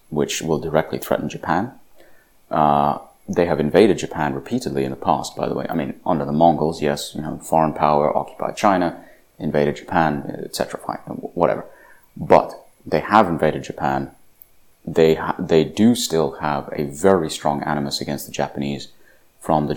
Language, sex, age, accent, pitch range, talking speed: English, male, 30-49, British, 70-85 Hz, 165 wpm